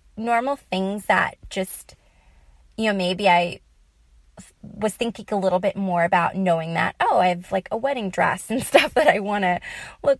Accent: American